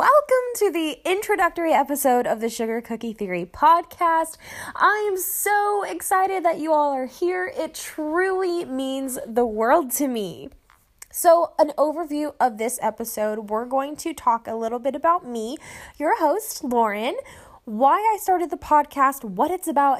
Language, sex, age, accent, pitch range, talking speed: English, female, 10-29, American, 225-340 Hz, 155 wpm